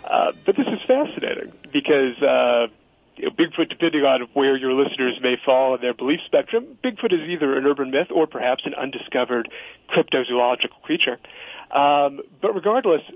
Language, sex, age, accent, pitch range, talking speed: English, male, 40-59, American, 125-180 Hz, 165 wpm